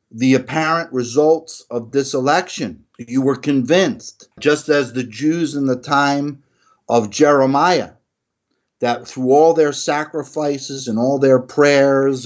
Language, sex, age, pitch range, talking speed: English, male, 50-69, 110-150 Hz, 130 wpm